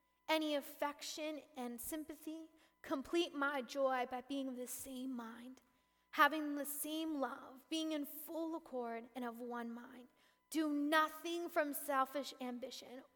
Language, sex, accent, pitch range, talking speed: English, female, American, 255-310 Hz, 135 wpm